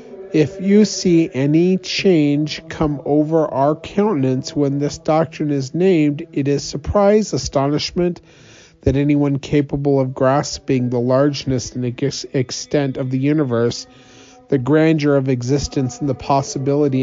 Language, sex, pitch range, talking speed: English, male, 120-160 Hz, 130 wpm